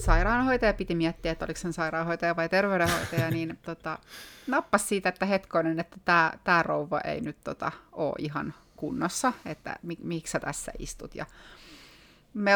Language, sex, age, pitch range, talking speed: Finnish, female, 30-49, 155-190 Hz, 155 wpm